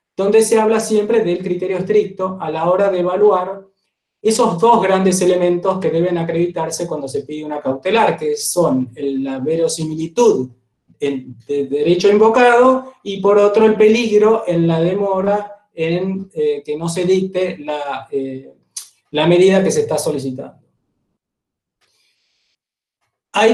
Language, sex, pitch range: Spanish, male, 160-200 Hz